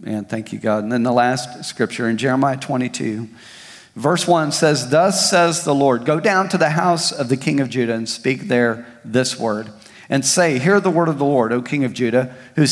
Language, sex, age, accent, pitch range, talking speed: English, male, 40-59, American, 120-150 Hz, 220 wpm